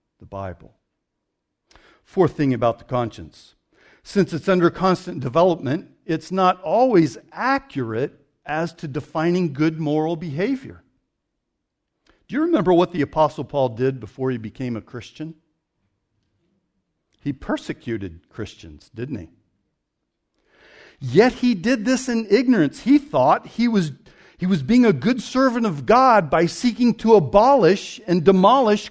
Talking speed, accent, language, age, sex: 135 wpm, American, English, 60-79, male